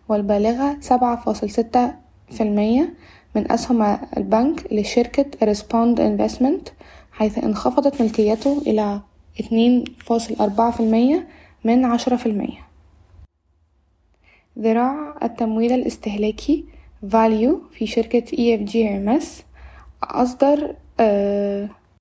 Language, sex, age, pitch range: Arabic, female, 10-29, 210-245 Hz